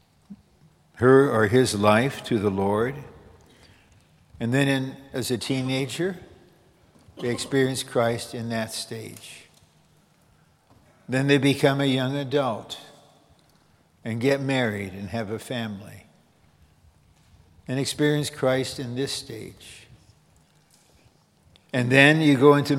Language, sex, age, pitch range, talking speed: English, male, 60-79, 110-135 Hz, 110 wpm